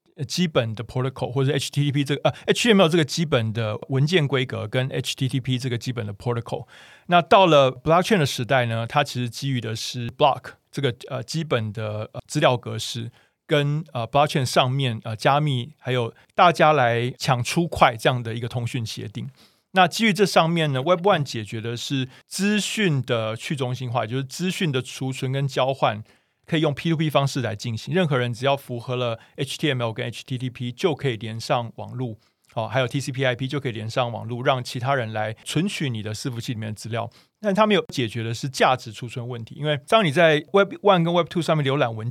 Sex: male